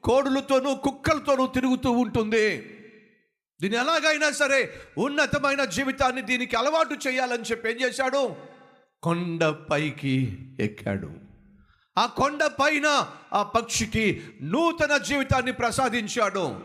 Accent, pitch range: native, 205-285 Hz